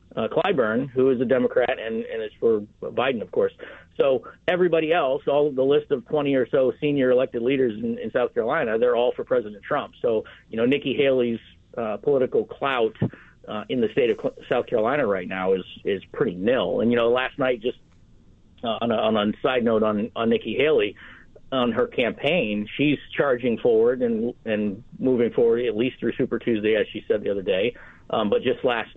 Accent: American